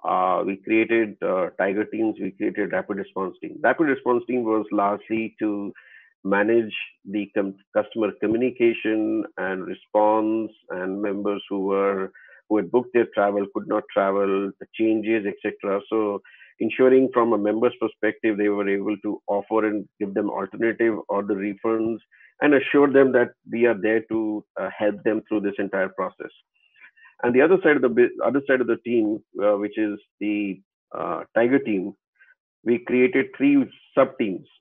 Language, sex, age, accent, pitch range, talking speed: English, male, 50-69, Indian, 105-125 Hz, 170 wpm